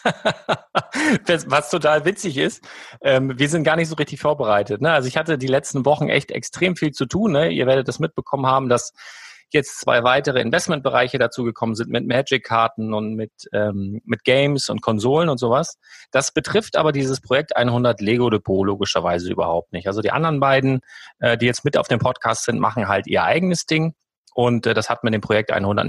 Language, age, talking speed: German, 30-49, 190 wpm